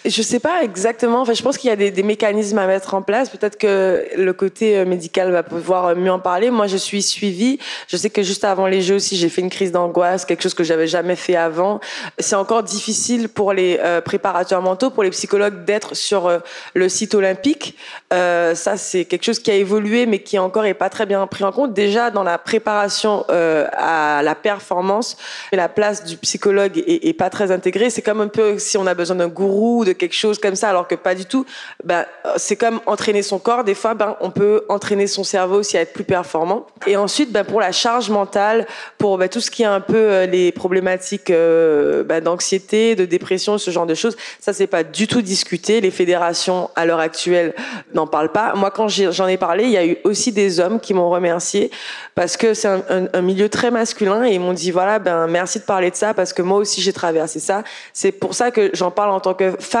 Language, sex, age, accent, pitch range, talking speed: French, female, 20-39, French, 180-215 Hz, 230 wpm